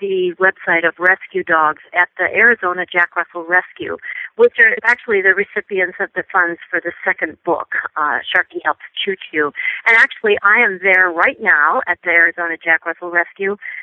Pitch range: 175-235 Hz